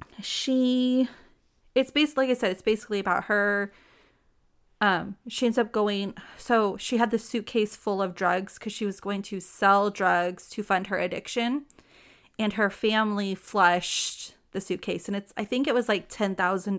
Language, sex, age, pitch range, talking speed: English, female, 30-49, 190-225 Hz, 175 wpm